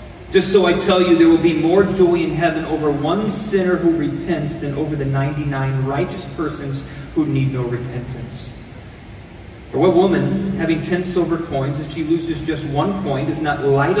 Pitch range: 140-175 Hz